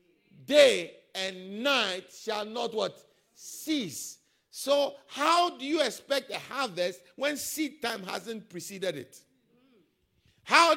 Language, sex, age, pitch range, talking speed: English, male, 50-69, 175-265 Hz, 115 wpm